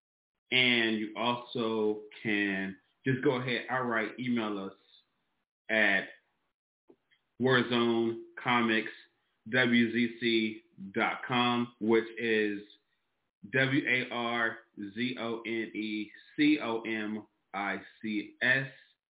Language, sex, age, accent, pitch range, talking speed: English, male, 20-39, American, 105-120 Hz, 50 wpm